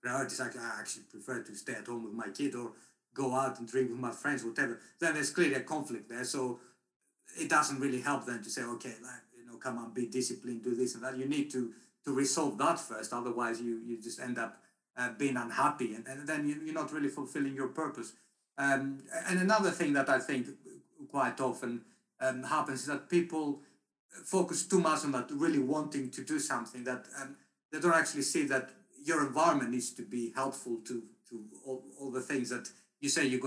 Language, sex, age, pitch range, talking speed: English, male, 50-69, 120-150 Hz, 215 wpm